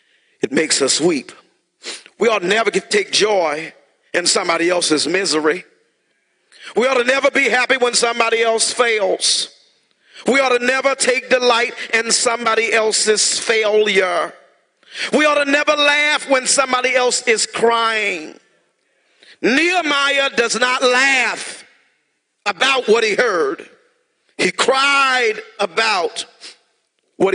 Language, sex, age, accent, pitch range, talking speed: English, male, 40-59, American, 235-350 Hz, 125 wpm